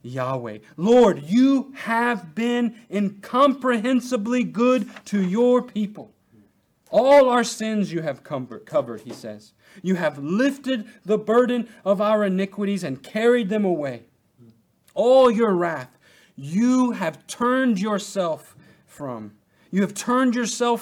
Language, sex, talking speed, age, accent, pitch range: English, male, 125 wpm, 40-59, American, 145-235 Hz